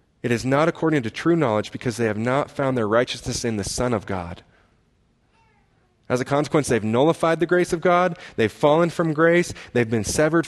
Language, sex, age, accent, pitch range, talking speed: English, male, 30-49, American, 115-150 Hz, 200 wpm